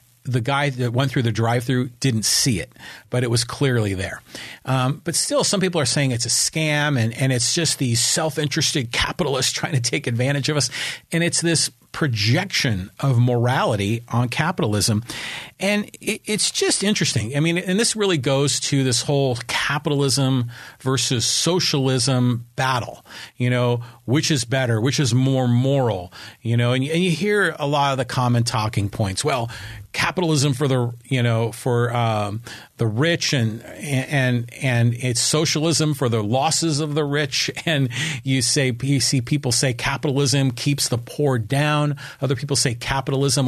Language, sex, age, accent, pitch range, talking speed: English, male, 40-59, American, 120-155 Hz, 170 wpm